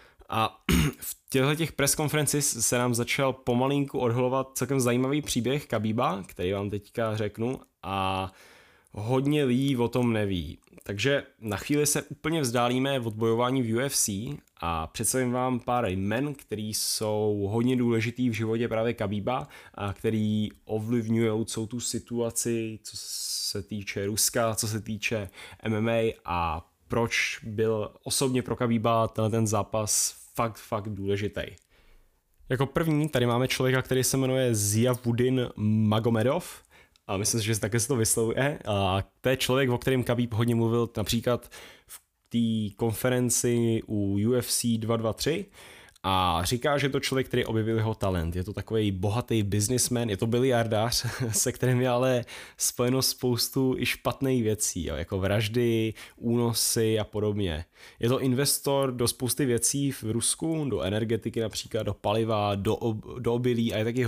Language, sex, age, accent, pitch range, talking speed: Czech, male, 10-29, native, 105-125 Hz, 150 wpm